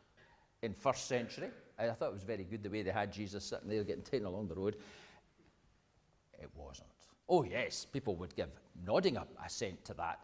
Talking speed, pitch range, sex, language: 195 wpm, 100-165 Hz, male, English